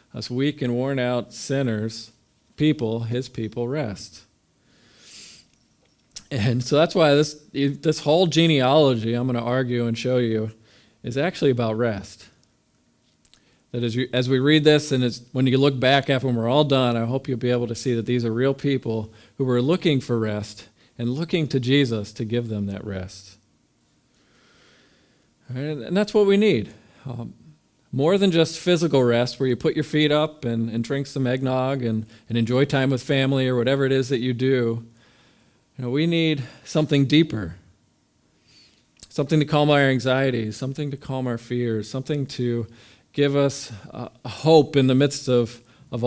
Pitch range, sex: 115-140 Hz, male